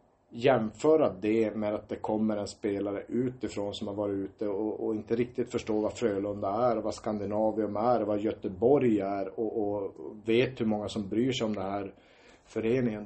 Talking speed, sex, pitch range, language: 195 wpm, male, 100-115 Hz, Swedish